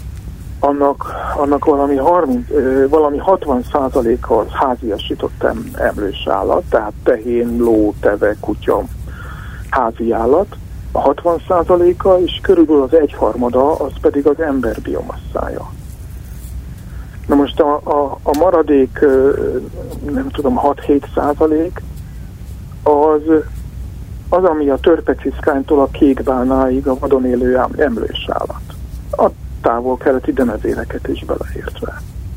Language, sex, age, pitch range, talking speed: Hungarian, male, 60-79, 125-155 Hz, 100 wpm